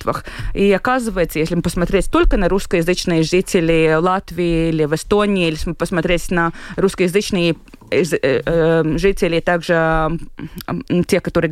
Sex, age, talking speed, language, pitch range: female, 20-39, 120 wpm, Russian, 165-195 Hz